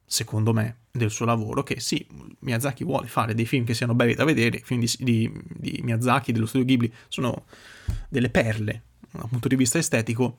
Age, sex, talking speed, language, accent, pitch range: 30-49, male, 190 wpm, Italian, native, 115-140 Hz